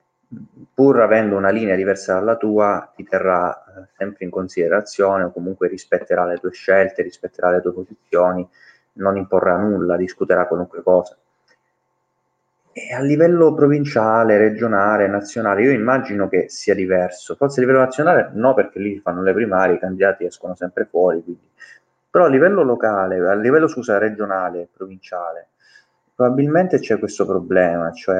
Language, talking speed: Italian, 145 wpm